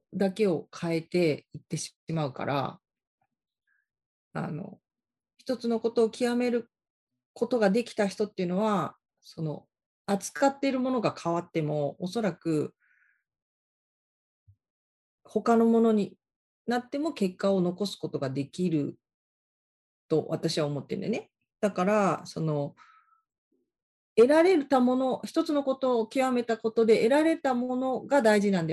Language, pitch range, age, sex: Japanese, 170-275 Hz, 40-59, female